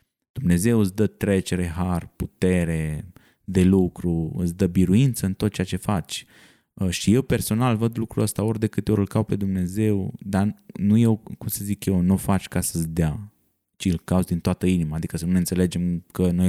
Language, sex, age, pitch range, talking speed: Romanian, male, 20-39, 90-115 Hz, 205 wpm